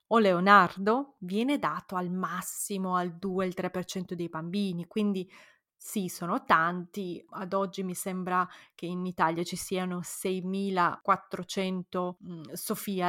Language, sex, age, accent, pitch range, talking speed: Italian, female, 20-39, native, 180-205 Hz, 120 wpm